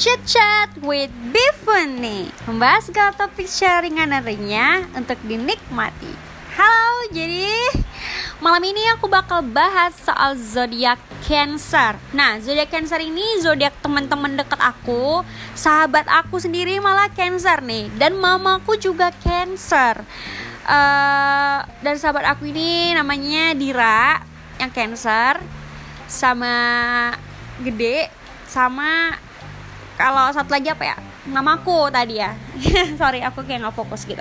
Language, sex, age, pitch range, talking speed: Indonesian, female, 20-39, 260-355 Hz, 115 wpm